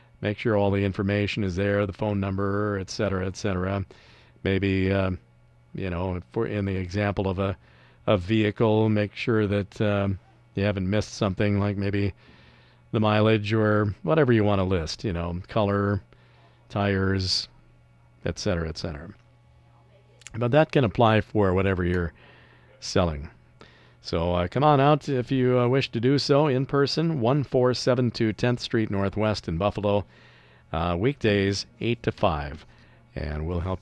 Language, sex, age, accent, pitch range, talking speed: English, male, 50-69, American, 95-120 Hz, 155 wpm